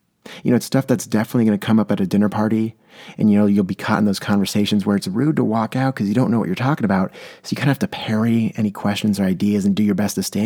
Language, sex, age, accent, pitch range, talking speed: English, male, 30-49, American, 100-120 Hz, 310 wpm